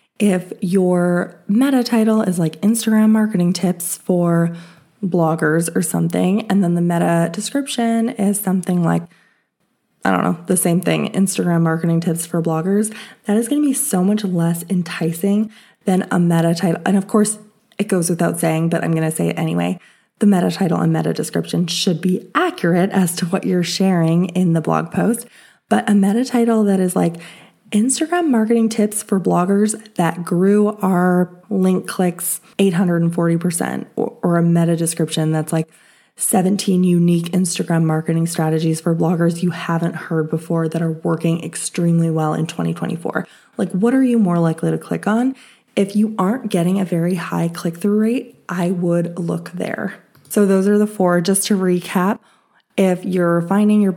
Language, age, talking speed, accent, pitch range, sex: English, 20-39, 170 wpm, American, 170-205 Hz, female